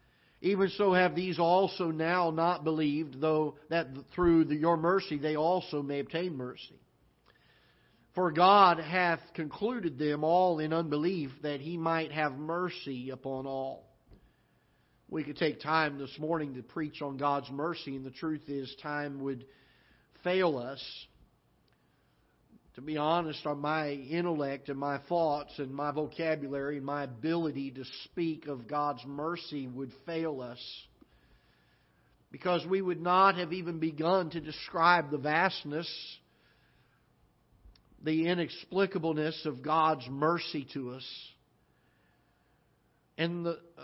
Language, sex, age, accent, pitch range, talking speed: English, male, 50-69, American, 140-170 Hz, 130 wpm